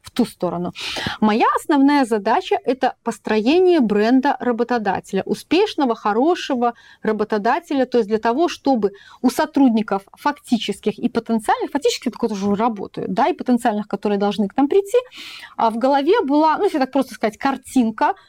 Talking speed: 140 wpm